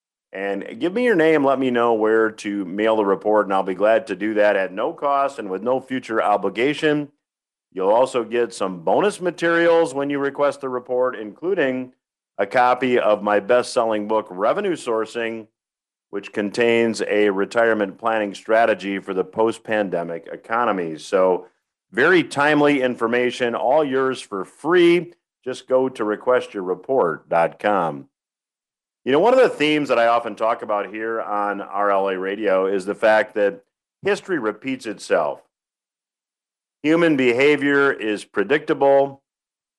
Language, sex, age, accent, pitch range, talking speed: English, male, 50-69, American, 105-130 Hz, 145 wpm